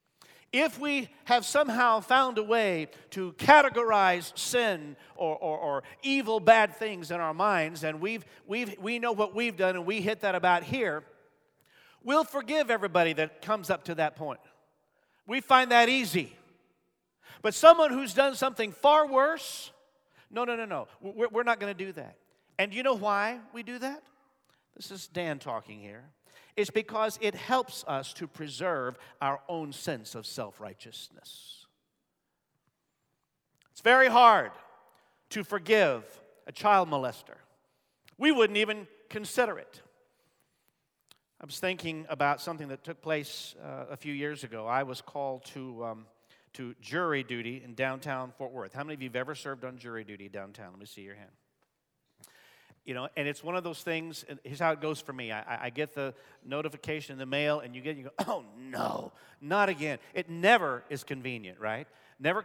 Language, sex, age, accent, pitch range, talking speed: English, male, 50-69, American, 140-225 Hz, 170 wpm